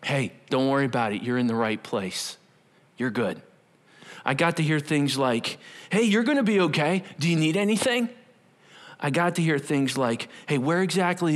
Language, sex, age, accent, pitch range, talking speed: English, male, 40-59, American, 130-170 Hz, 190 wpm